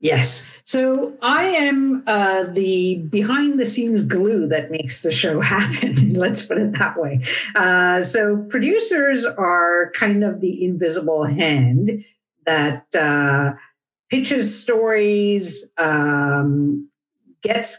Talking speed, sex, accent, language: 120 wpm, female, American, English